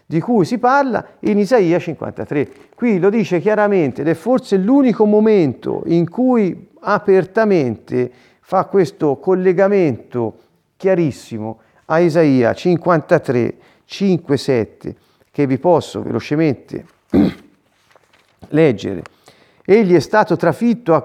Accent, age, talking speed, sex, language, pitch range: native, 50-69, 105 wpm, male, Italian, 145-195 Hz